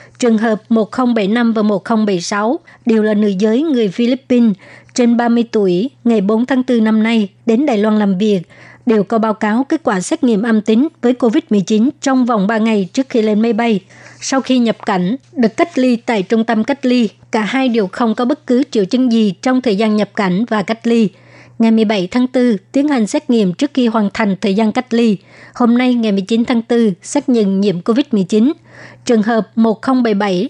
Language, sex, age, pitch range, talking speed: Vietnamese, male, 60-79, 215-250 Hz, 205 wpm